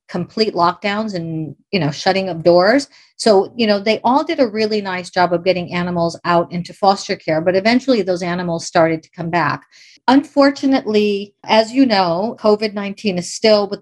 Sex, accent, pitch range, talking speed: female, American, 175-215 Hz, 180 wpm